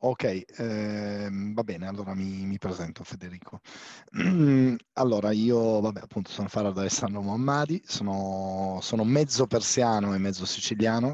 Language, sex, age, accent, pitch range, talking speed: Italian, male, 30-49, native, 95-115 Hz, 135 wpm